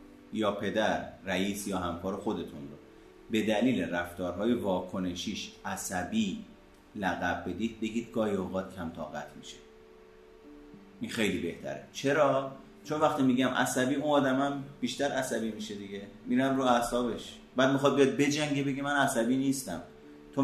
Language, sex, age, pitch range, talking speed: Persian, male, 30-49, 90-140 Hz, 130 wpm